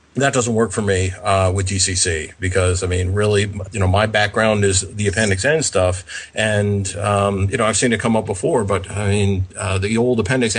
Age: 40-59